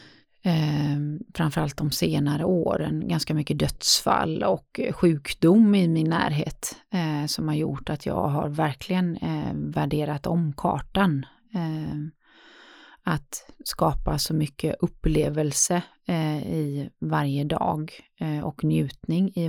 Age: 30-49